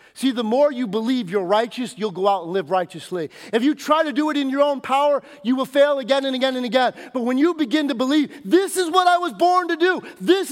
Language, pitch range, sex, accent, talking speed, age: English, 255-320 Hz, male, American, 260 wpm, 30-49